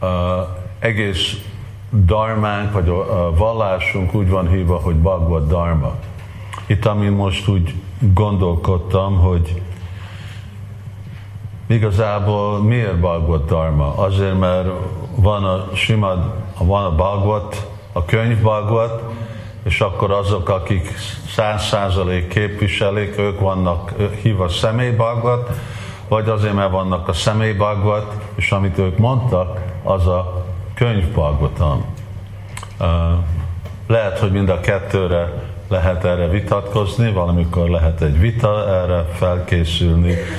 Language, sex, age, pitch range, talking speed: Hungarian, male, 50-69, 90-105 Hz, 110 wpm